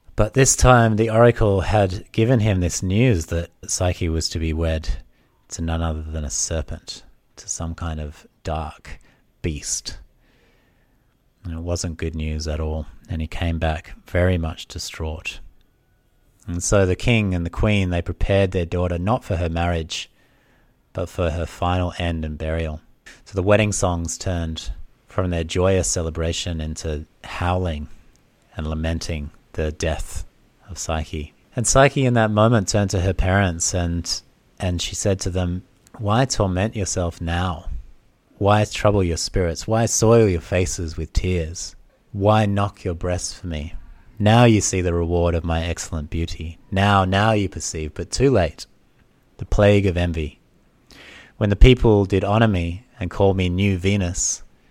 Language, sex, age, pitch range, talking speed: English, male, 30-49, 80-105 Hz, 160 wpm